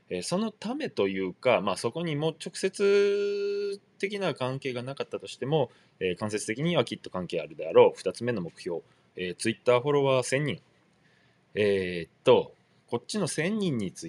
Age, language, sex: 20-39, Japanese, male